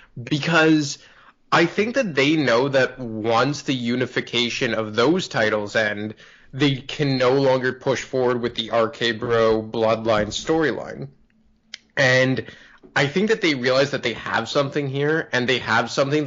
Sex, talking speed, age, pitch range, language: male, 150 wpm, 20-39, 110-135 Hz, English